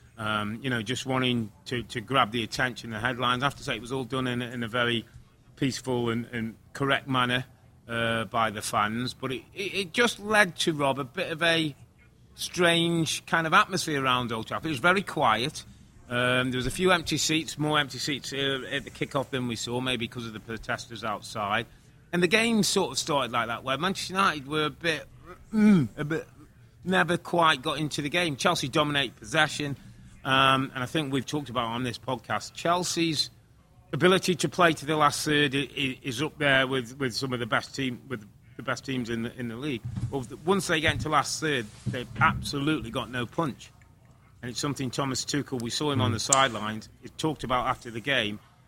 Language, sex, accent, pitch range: English, male, British, 120-150 Hz